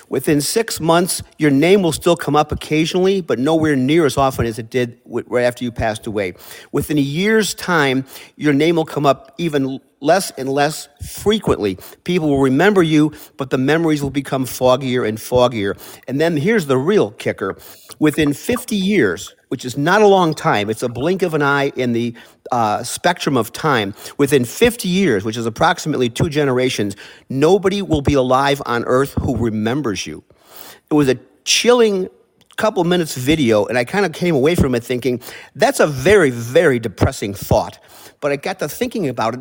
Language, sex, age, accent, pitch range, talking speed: English, male, 50-69, American, 130-170 Hz, 185 wpm